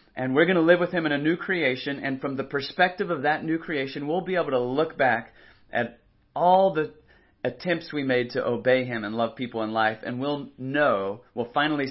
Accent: American